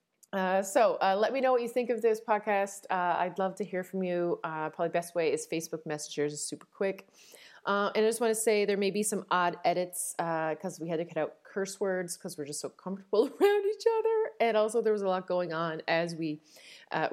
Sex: female